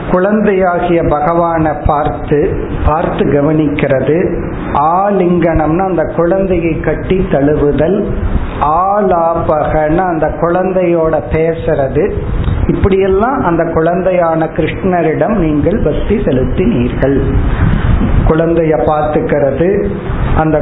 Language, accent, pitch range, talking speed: Tamil, native, 150-195 Hz, 70 wpm